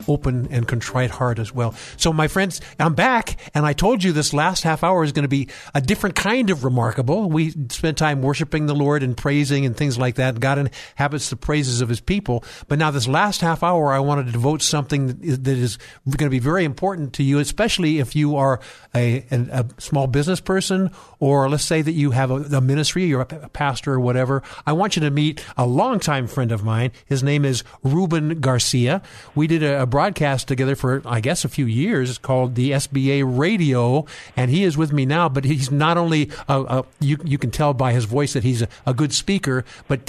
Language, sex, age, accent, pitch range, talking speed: English, male, 50-69, American, 130-155 Hz, 225 wpm